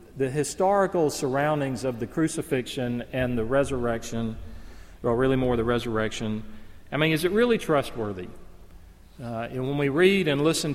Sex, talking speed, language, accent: male, 150 wpm, English, American